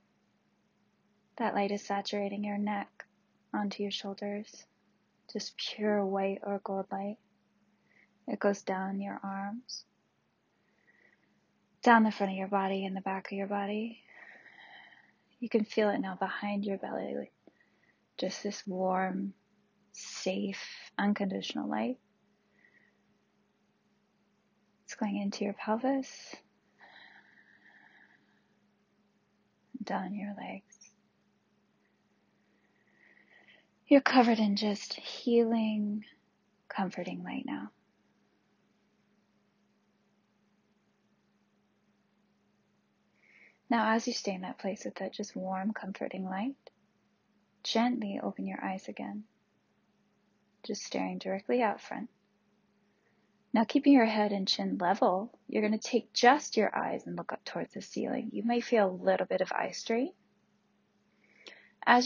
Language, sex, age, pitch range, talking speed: English, female, 20-39, 195-220 Hz, 110 wpm